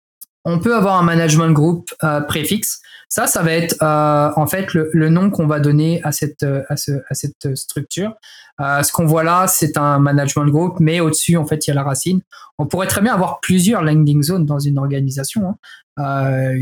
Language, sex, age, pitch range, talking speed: French, male, 20-39, 140-165 Hz, 200 wpm